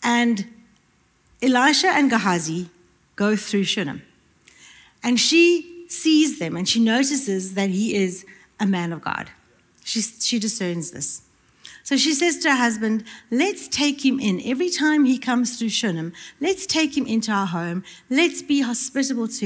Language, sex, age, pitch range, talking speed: English, female, 60-79, 180-275 Hz, 155 wpm